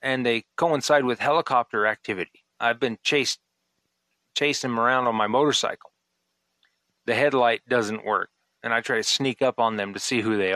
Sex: male